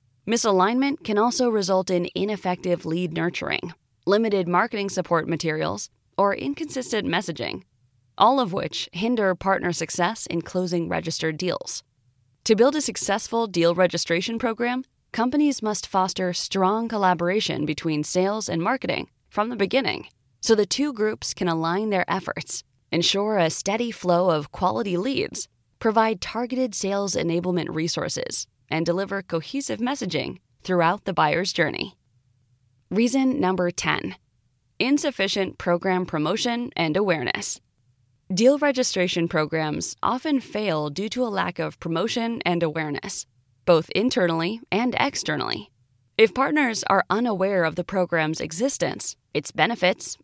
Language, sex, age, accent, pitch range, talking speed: English, female, 20-39, American, 160-220 Hz, 130 wpm